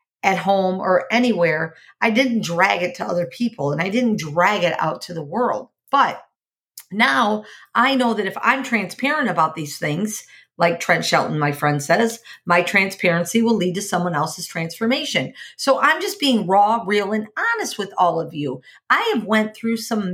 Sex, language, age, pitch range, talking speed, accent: female, English, 50-69, 170-240 Hz, 185 wpm, American